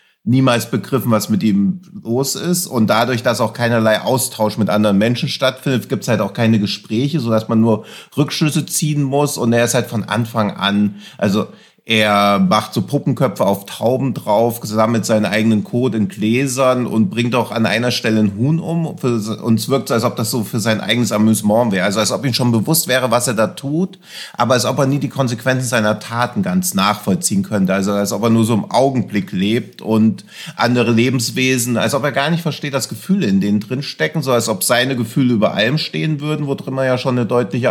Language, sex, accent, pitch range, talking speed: German, male, German, 115-150 Hz, 215 wpm